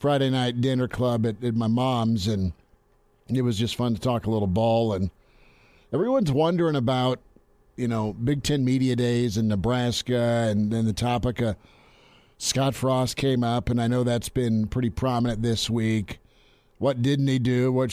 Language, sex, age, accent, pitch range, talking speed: English, male, 50-69, American, 110-130 Hz, 175 wpm